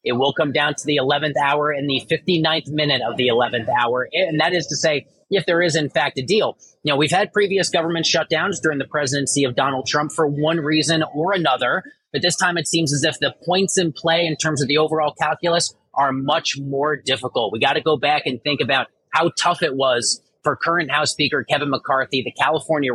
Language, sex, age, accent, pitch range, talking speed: English, male, 30-49, American, 140-165 Hz, 225 wpm